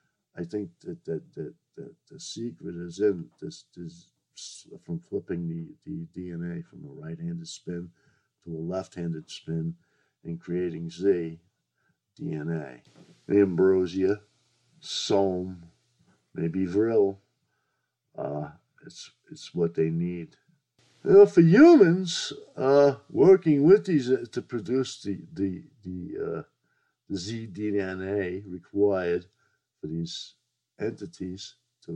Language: English